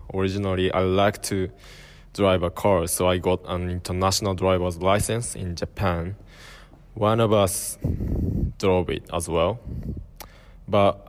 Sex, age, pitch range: male, 20-39, 90-100 Hz